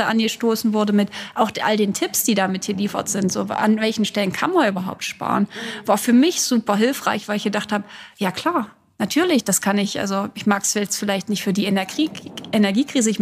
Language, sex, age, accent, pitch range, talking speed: German, female, 30-49, German, 195-225 Hz, 205 wpm